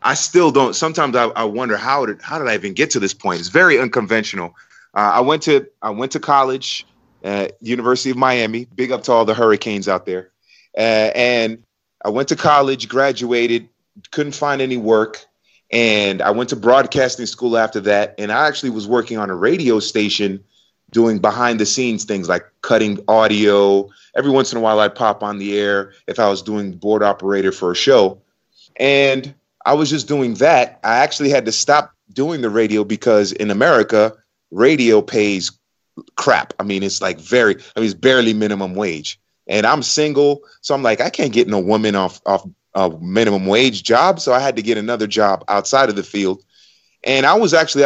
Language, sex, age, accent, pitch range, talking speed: English, male, 30-49, American, 105-130 Hz, 190 wpm